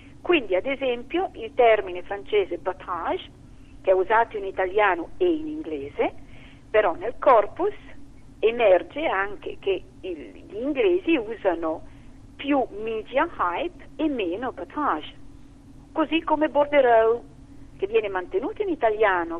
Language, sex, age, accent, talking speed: Italian, female, 50-69, native, 120 wpm